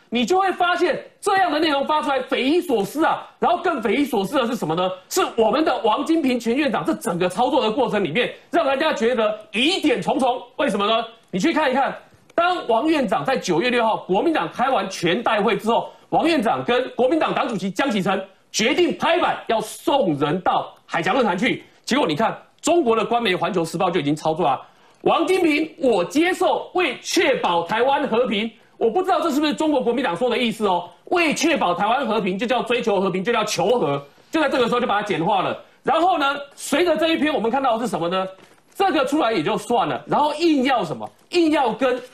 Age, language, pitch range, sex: 40-59, Chinese, 210-310 Hz, male